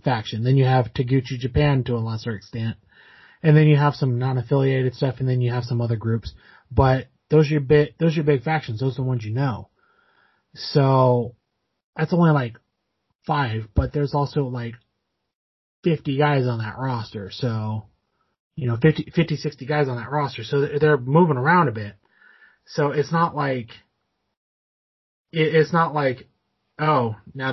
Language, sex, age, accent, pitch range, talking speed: English, male, 30-49, American, 120-150 Hz, 160 wpm